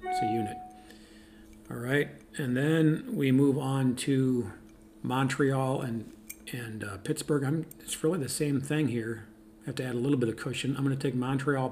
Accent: American